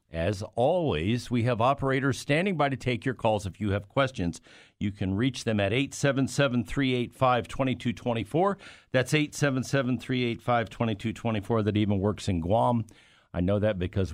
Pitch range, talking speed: 100-130 Hz, 135 wpm